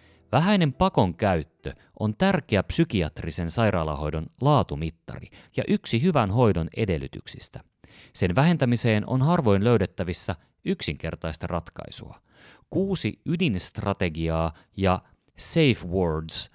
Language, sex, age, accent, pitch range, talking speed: Finnish, male, 30-49, native, 85-125 Hz, 90 wpm